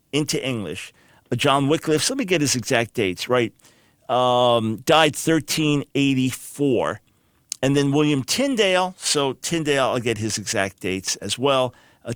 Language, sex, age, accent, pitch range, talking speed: English, male, 50-69, American, 120-160 Hz, 155 wpm